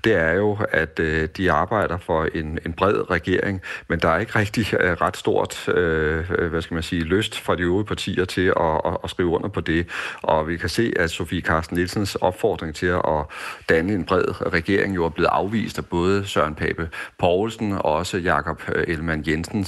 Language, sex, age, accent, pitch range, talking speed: Danish, male, 40-59, native, 80-100 Hz, 185 wpm